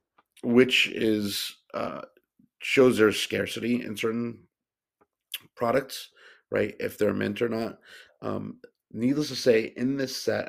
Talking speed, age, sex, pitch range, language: 125 wpm, 50-69, male, 105-115 Hz, English